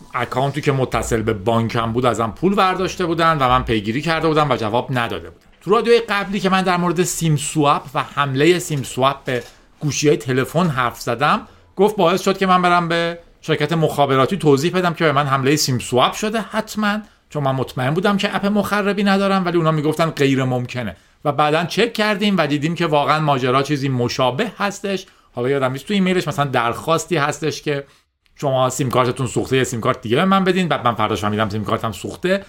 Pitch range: 130-185 Hz